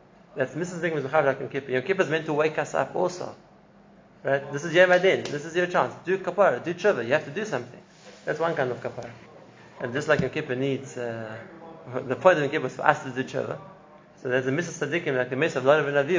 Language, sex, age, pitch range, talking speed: English, male, 30-49, 125-155 Hz, 225 wpm